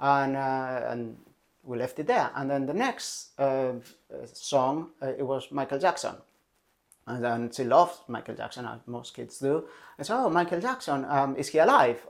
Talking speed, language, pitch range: 185 wpm, English, 120-150 Hz